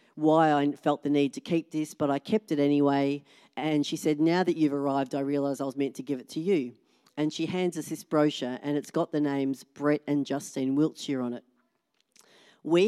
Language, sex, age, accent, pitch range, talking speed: English, female, 40-59, Australian, 130-150 Hz, 225 wpm